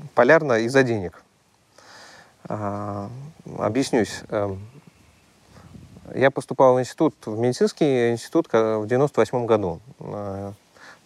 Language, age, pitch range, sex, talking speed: Russian, 30-49, 100-125 Hz, male, 100 wpm